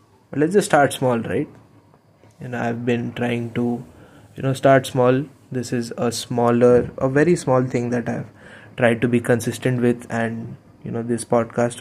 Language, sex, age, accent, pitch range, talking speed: Hindi, male, 20-39, native, 115-130 Hz, 180 wpm